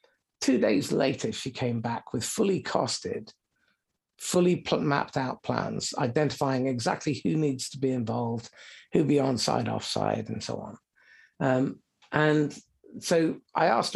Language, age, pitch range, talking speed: English, 50-69, 125-150 Hz, 145 wpm